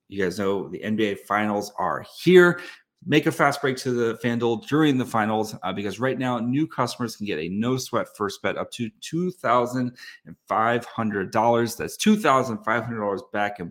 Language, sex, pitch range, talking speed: English, male, 105-130 Hz, 160 wpm